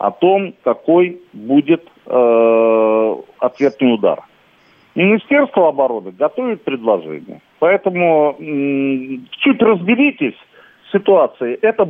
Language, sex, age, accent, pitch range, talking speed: Russian, male, 50-69, native, 130-195 Hz, 90 wpm